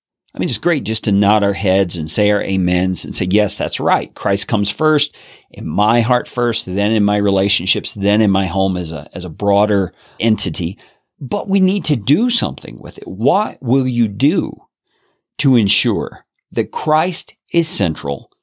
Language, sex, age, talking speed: English, male, 40-59, 180 wpm